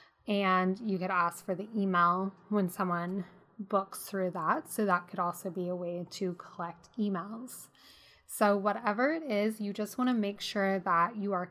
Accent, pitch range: American, 190-220 Hz